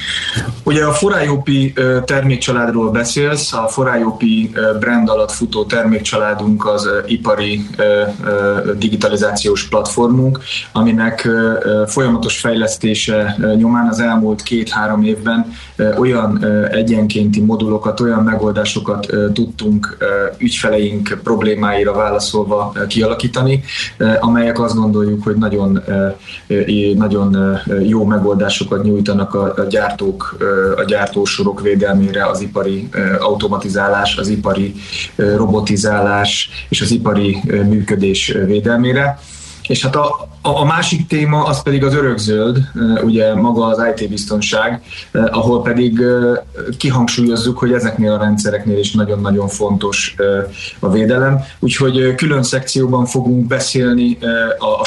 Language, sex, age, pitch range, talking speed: Hungarian, male, 20-39, 105-125 Hz, 100 wpm